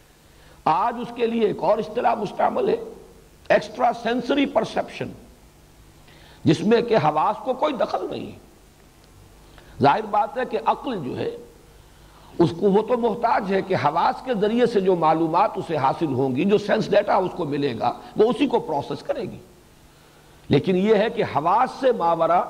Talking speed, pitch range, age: 175 wpm, 145-230 Hz, 60-79